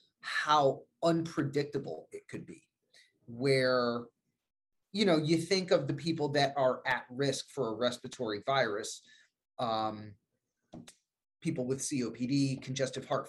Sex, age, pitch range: male, 30-49, 120-150 Hz